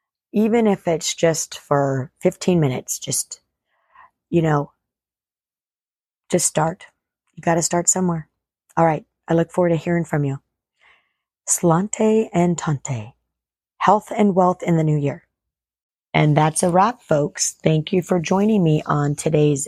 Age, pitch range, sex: 40-59, 150-190 Hz, female